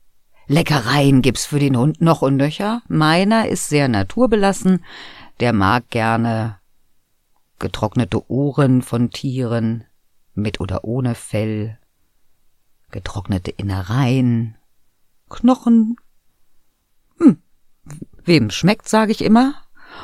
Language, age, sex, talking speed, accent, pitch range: German, 50-69, female, 95 wpm, German, 100-145 Hz